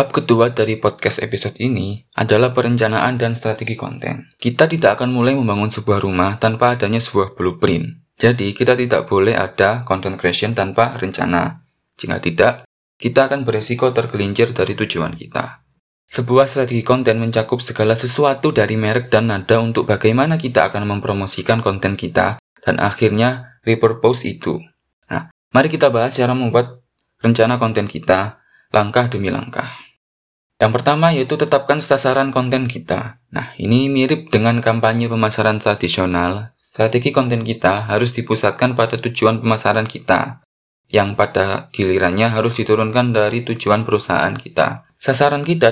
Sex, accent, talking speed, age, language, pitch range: male, native, 140 wpm, 20-39, Indonesian, 105-125 Hz